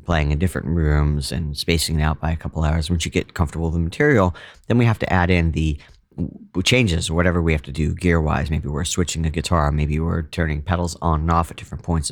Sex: male